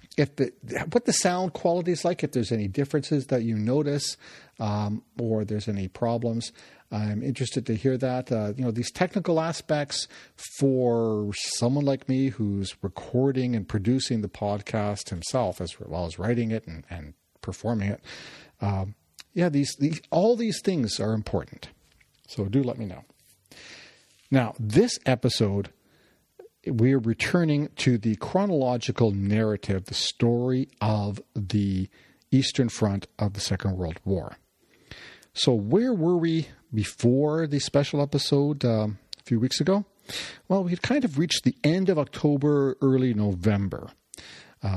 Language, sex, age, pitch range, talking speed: English, male, 50-69, 105-140 Hz, 150 wpm